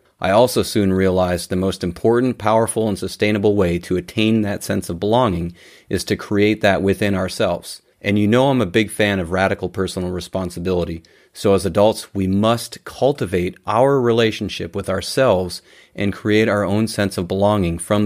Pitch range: 95-110 Hz